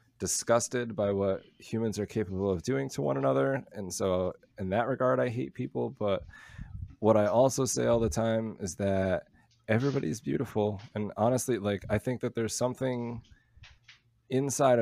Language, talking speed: English, 160 wpm